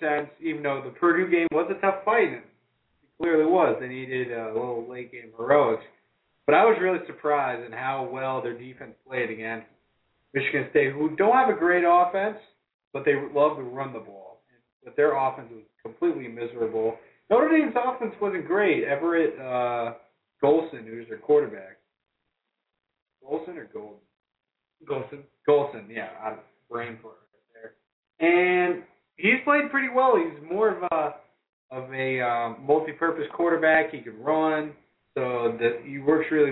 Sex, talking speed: male, 165 wpm